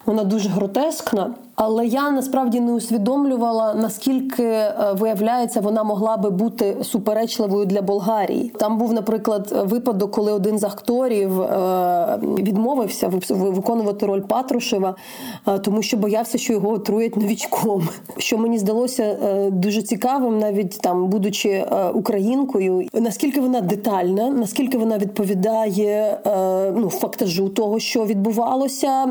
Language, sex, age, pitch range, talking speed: Ukrainian, female, 20-39, 200-230 Hz, 115 wpm